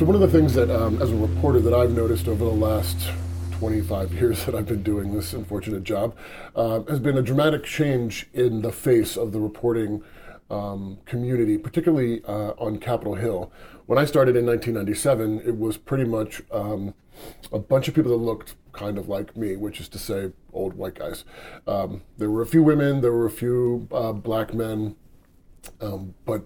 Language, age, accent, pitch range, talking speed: English, 40-59, American, 100-120 Hz, 195 wpm